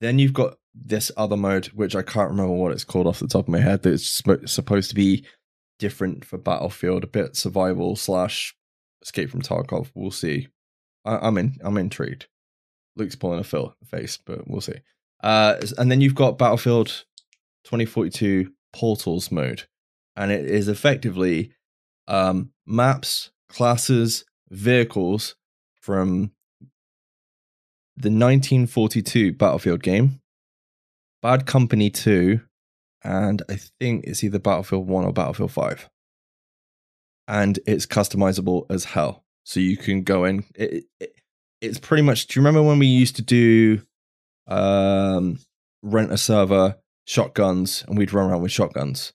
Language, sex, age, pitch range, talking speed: English, male, 10-29, 95-115 Hz, 145 wpm